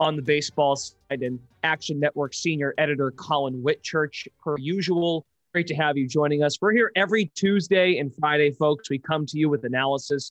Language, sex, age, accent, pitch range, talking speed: English, male, 30-49, American, 140-180 Hz, 185 wpm